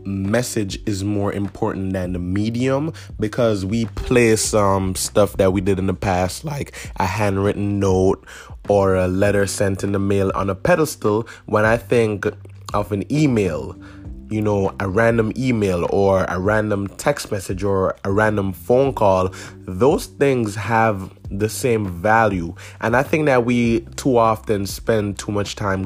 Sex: male